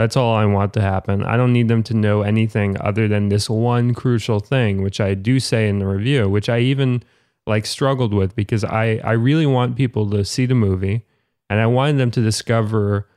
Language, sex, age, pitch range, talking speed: English, male, 20-39, 105-125 Hz, 220 wpm